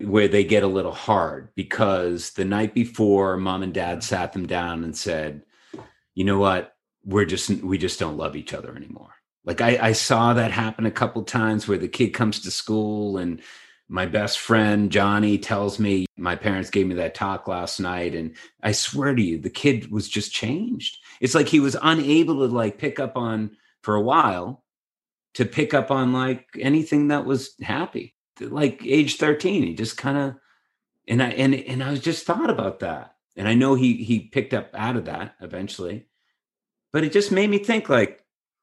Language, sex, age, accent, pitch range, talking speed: English, male, 30-49, American, 100-135 Hz, 200 wpm